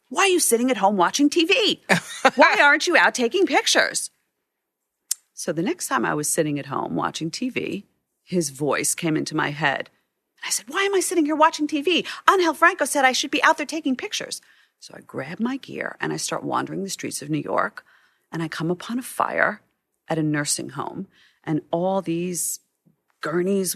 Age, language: 40-59, English